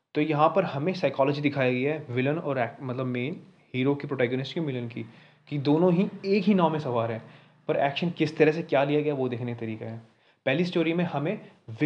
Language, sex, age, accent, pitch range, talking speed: Hindi, male, 30-49, native, 125-155 Hz, 225 wpm